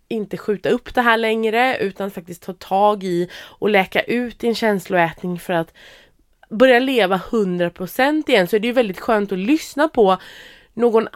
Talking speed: 180 wpm